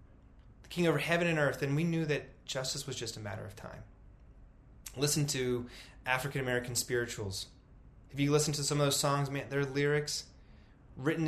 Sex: male